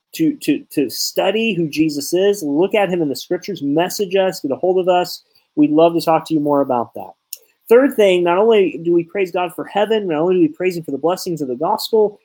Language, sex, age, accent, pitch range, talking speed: English, male, 30-49, American, 160-210 Hz, 245 wpm